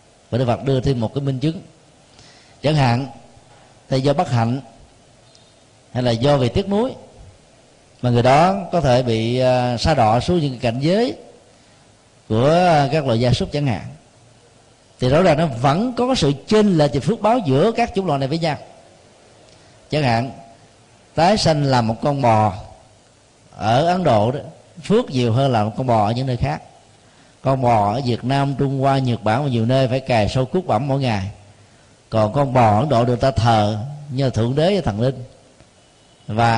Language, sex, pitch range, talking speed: Vietnamese, male, 115-150 Hz, 190 wpm